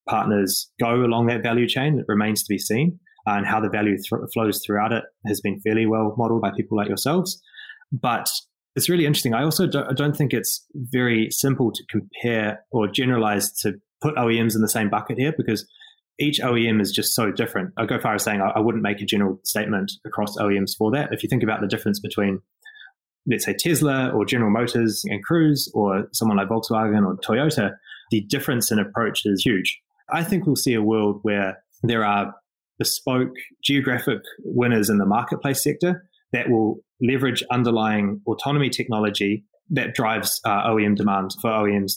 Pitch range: 105-130 Hz